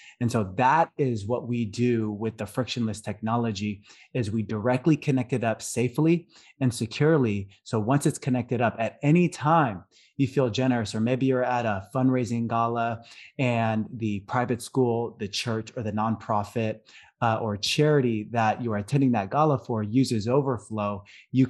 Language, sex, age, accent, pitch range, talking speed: English, male, 20-39, American, 110-135 Hz, 165 wpm